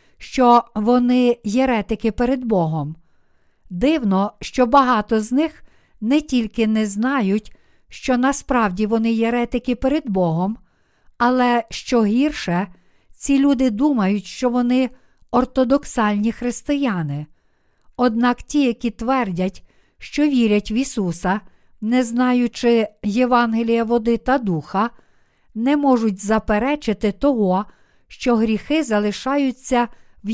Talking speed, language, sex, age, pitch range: 105 wpm, Ukrainian, female, 50-69, 215-255 Hz